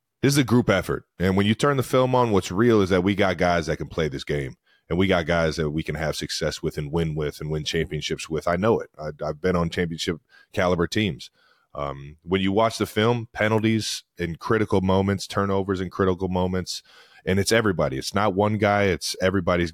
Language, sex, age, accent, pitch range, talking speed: English, male, 30-49, American, 90-115 Hz, 220 wpm